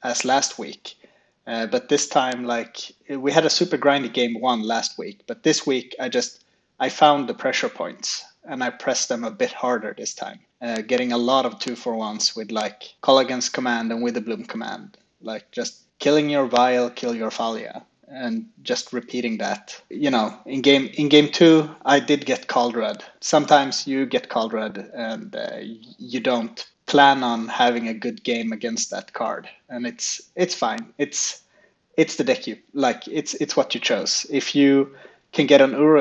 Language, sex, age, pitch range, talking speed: English, male, 20-39, 120-145 Hz, 195 wpm